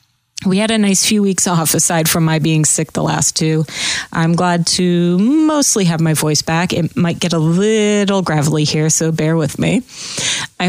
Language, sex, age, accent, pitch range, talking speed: English, female, 30-49, American, 160-185 Hz, 195 wpm